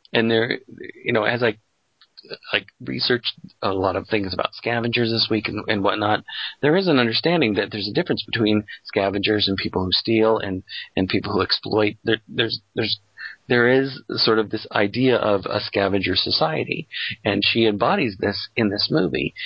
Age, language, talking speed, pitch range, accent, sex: 40-59, English, 180 wpm, 100-115 Hz, American, male